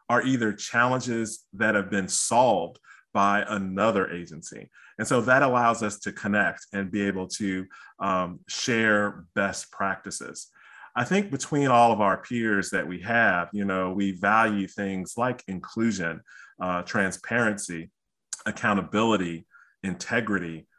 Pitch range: 95-115 Hz